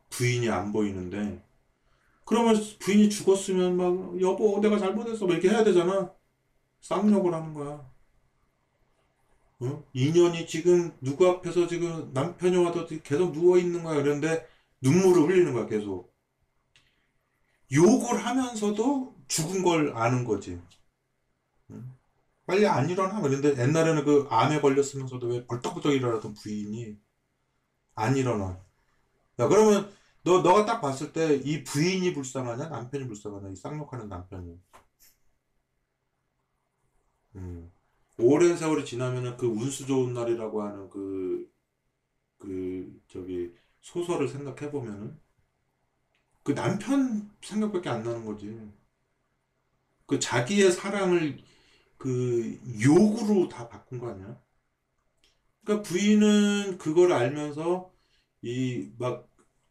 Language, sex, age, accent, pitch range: Korean, male, 40-59, native, 115-180 Hz